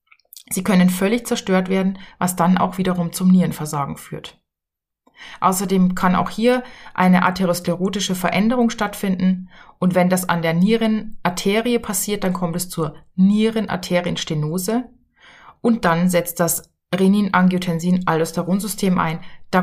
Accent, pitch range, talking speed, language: German, 170-215 Hz, 125 wpm, German